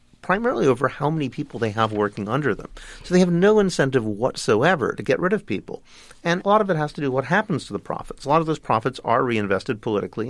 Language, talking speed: English, 250 wpm